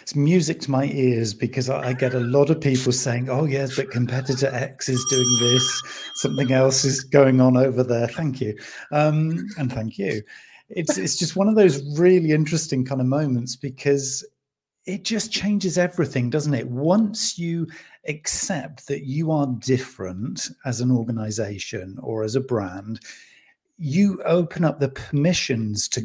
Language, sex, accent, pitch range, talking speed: English, male, British, 125-155 Hz, 165 wpm